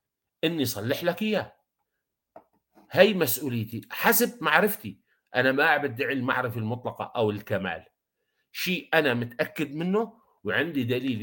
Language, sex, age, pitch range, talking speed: Arabic, male, 50-69, 115-155 Hz, 110 wpm